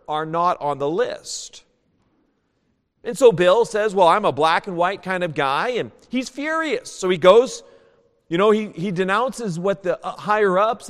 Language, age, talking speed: English, 40-59, 175 wpm